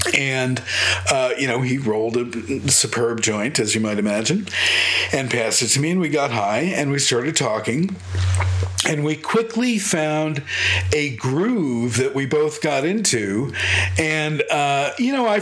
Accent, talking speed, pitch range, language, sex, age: American, 165 wpm, 120-175 Hz, English, male, 50-69